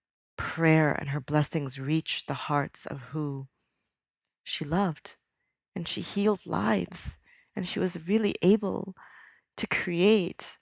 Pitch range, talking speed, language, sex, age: 155-180 Hz, 125 wpm, English, female, 40-59